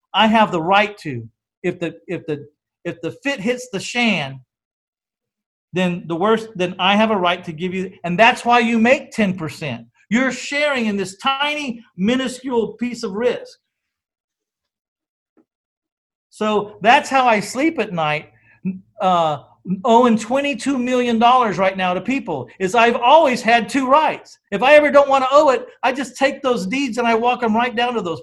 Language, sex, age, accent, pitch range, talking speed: English, male, 50-69, American, 180-245 Hz, 175 wpm